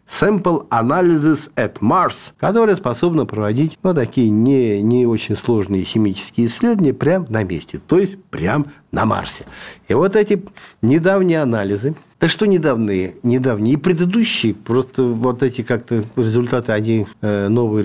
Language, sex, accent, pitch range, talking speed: Russian, male, native, 110-165 Hz, 140 wpm